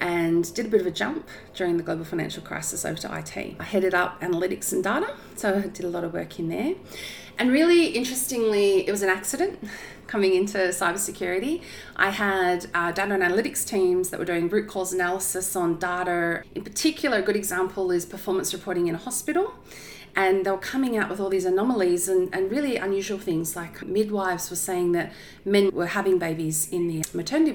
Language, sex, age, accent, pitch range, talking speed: English, female, 30-49, Australian, 175-220 Hz, 200 wpm